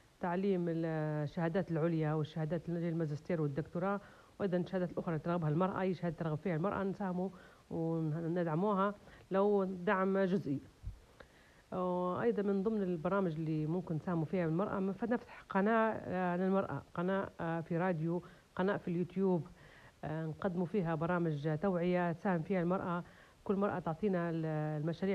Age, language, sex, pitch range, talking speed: 40-59, Arabic, female, 170-200 Hz, 120 wpm